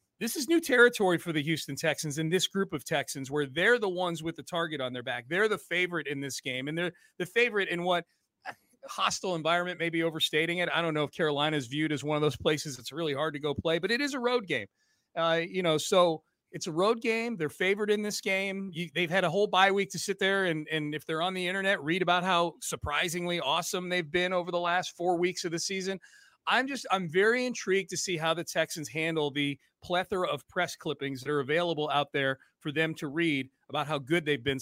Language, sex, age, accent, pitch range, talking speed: English, male, 30-49, American, 150-180 Hz, 240 wpm